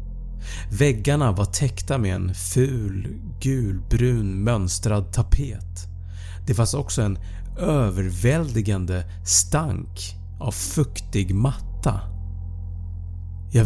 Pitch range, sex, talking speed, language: 85-115 Hz, male, 85 wpm, Swedish